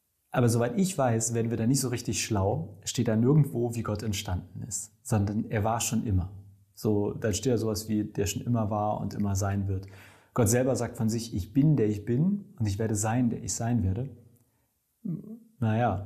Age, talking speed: 30-49, 215 wpm